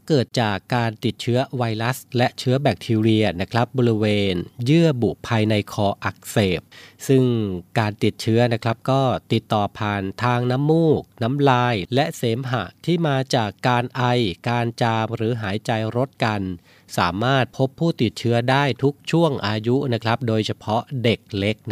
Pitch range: 110-135 Hz